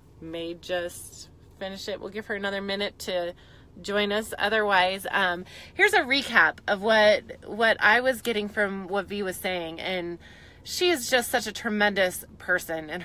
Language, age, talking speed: English, 20-39, 170 wpm